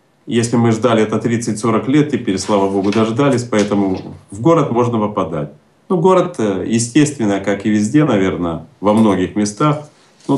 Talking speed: 150 wpm